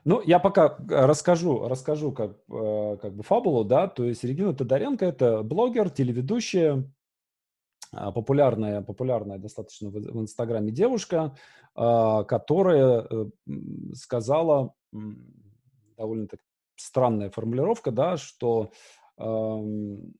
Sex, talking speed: male, 90 wpm